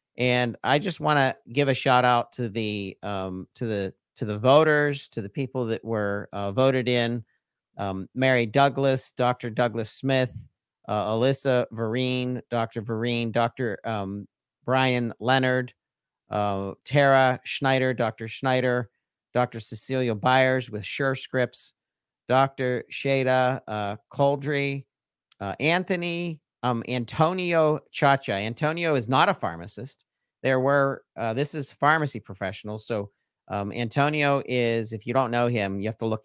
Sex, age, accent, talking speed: male, 40-59, American, 140 wpm